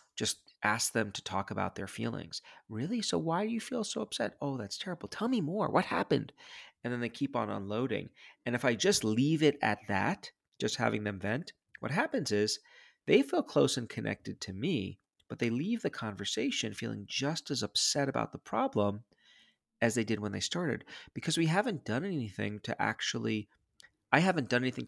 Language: English